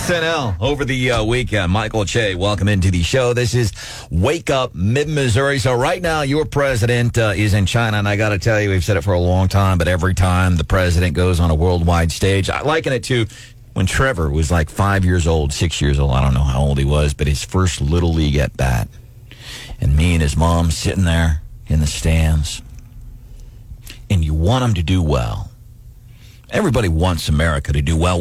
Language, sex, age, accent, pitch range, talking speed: English, male, 40-59, American, 90-115 Hz, 210 wpm